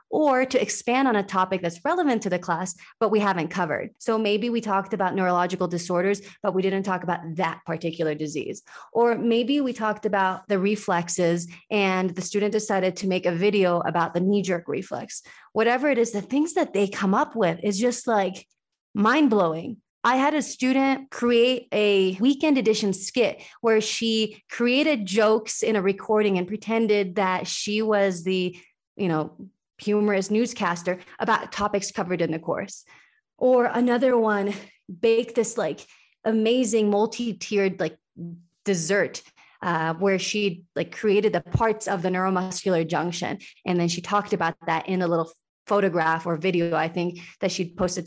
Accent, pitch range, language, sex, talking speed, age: American, 180-225 Hz, English, female, 165 wpm, 30-49